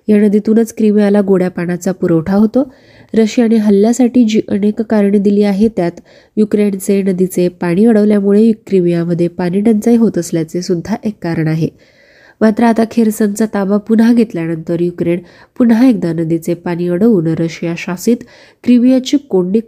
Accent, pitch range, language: native, 180-225 Hz, Marathi